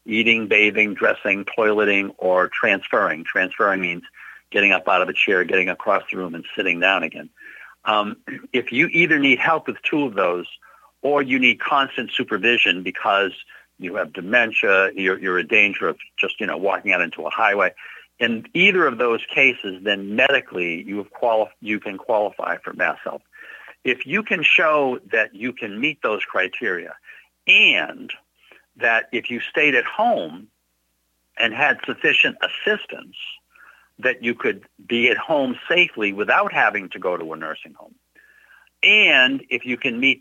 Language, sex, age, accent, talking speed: English, male, 60-79, American, 165 wpm